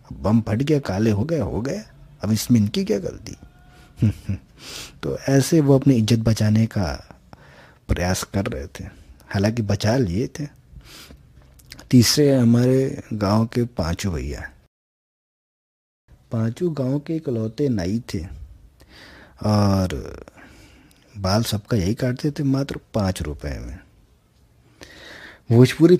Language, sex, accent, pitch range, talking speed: Hindi, male, native, 100-140 Hz, 120 wpm